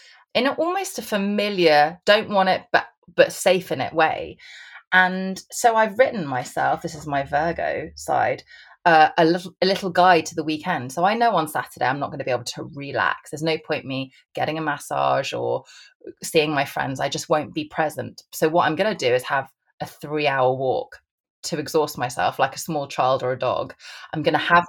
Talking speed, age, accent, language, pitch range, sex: 200 wpm, 20-39, British, English, 145-185 Hz, female